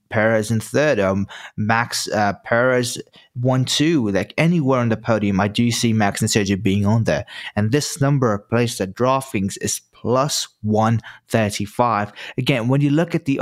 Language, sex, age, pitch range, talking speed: English, male, 20-39, 110-135 Hz, 170 wpm